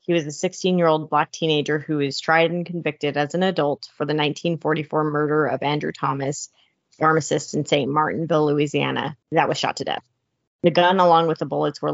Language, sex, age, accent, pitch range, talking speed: English, female, 30-49, American, 150-170 Hz, 190 wpm